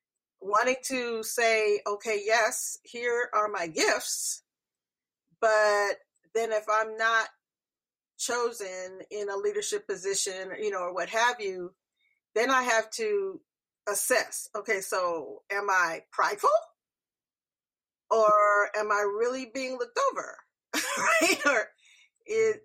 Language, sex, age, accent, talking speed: English, female, 40-59, American, 115 wpm